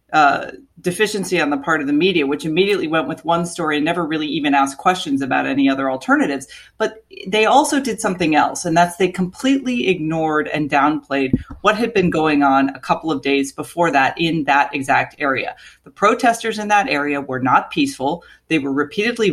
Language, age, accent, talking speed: English, 30-49, American, 195 wpm